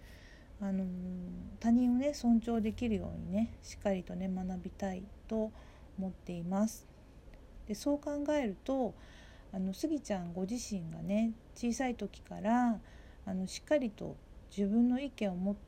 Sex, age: female, 50-69